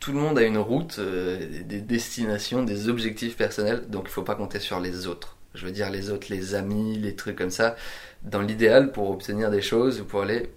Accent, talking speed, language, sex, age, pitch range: French, 235 wpm, French, male, 20-39, 105-135 Hz